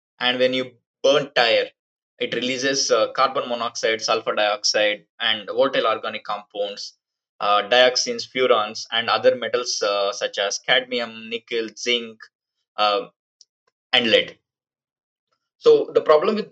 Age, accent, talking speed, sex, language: 20-39, native, 125 wpm, male, Tamil